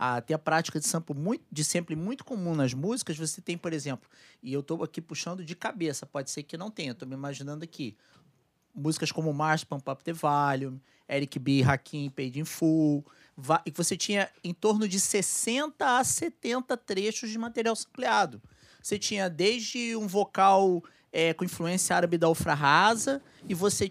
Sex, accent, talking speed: male, Brazilian, 185 wpm